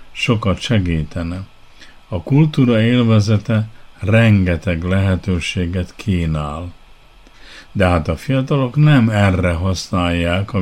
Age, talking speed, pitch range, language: 50-69, 90 wpm, 90-115 Hz, Hungarian